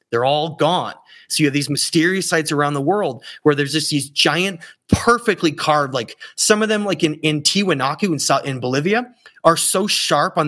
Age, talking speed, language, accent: 30-49, 195 wpm, English, American